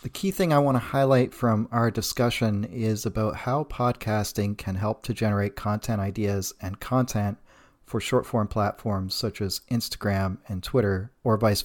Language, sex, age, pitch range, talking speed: English, male, 40-59, 105-130 Hz, 165 wpm